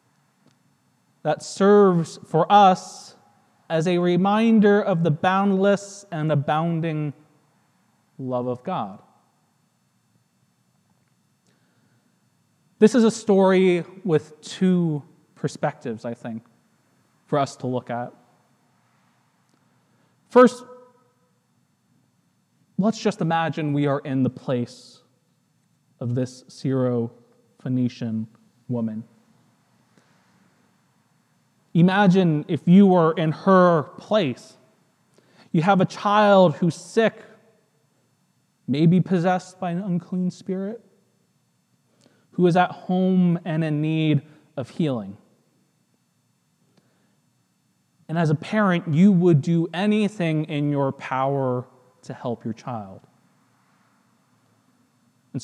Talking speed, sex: 95 wpm, male